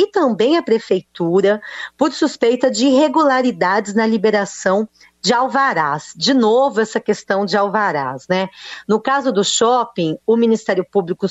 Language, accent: Portuguese, Brazilian